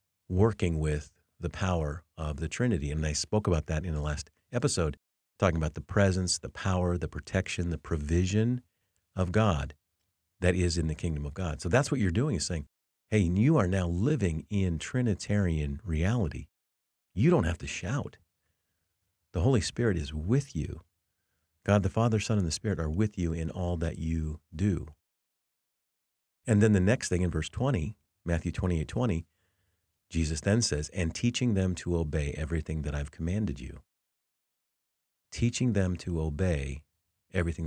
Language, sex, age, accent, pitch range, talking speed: English, male, 50-69, American, 80-100 Hz, 165 wpm